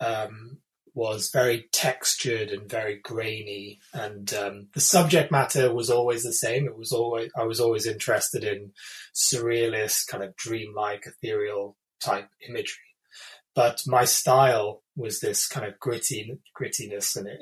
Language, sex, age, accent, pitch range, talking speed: English, male, 20-39, British, 115-140 Hz, 145 wpm